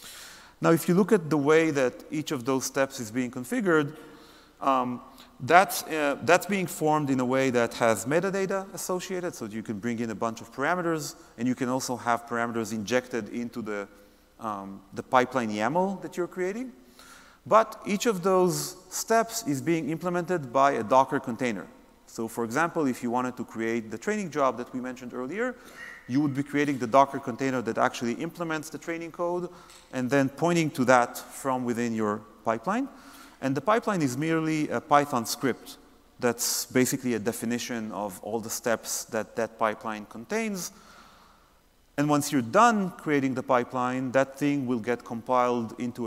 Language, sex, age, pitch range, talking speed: English, male, 30-49, 115-165 Hz, 175 wpm